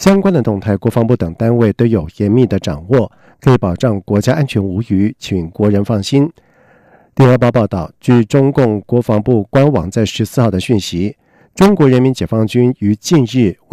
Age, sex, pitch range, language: 50-69, male, 100-130 Hz, German